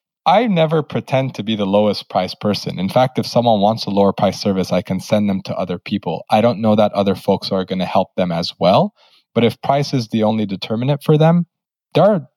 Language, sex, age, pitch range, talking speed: English, male, 20-39, 100-135 Hz, 240 wpm